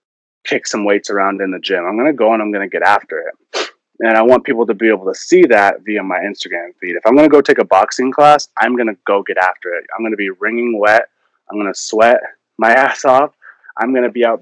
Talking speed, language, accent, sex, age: 245 wpm, English, American, male, 20-39